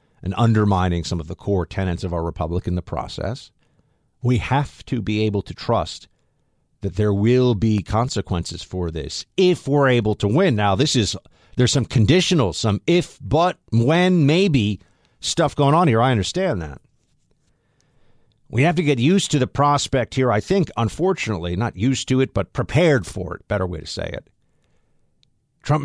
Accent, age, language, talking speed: American, 50-69, English, 175 wpm